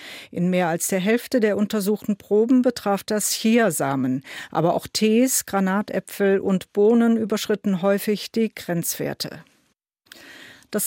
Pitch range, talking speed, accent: 185-220 Hz, 120 wpm, German